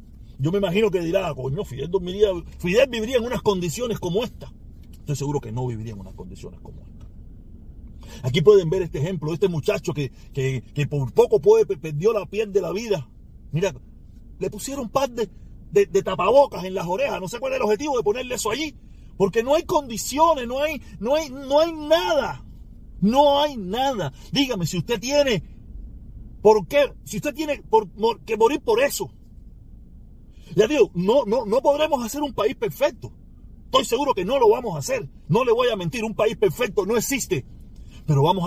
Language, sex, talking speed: Spanish, male, 195 wpm